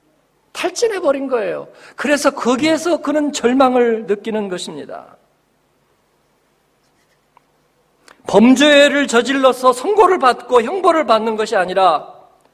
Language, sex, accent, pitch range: Korean, male, native, 225-285 Hz